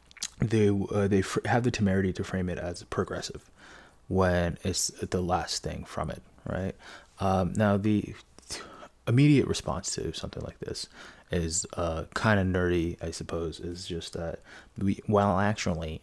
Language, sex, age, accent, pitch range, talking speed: English, male, 20-39, American, 85-105 Hz, 155 wpm